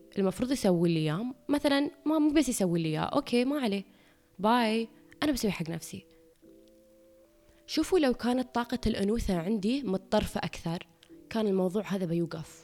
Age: 20-39